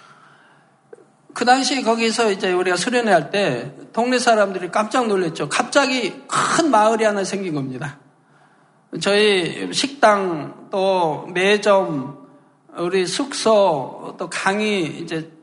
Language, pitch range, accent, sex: Korean, 165-235 Hz, native, male